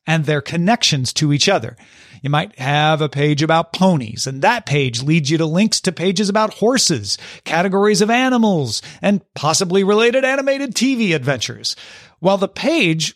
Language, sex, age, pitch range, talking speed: English, male, 40-59, 140-205 Hz, 165 wpm